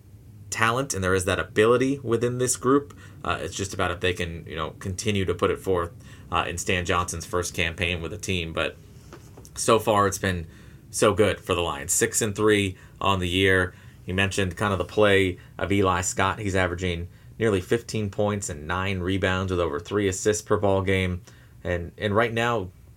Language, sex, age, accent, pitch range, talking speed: English, male, 30-49, American, 90-105 Hz, 200 wpm